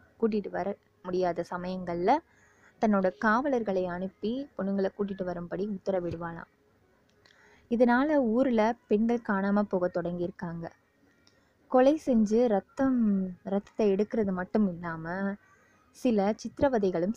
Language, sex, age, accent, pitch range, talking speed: Tamil, female, 20-39, native, 180-225 Hz, 75 wpm